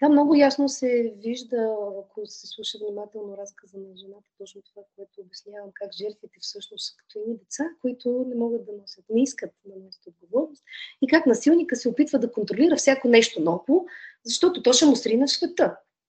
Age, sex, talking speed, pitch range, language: 30-49, female, 185 wpm, 205-255 Hz, Bulgarian